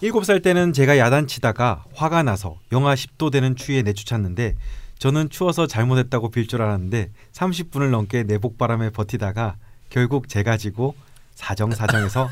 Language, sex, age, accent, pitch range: Korean, male, 30-49, native, 110-140 Hz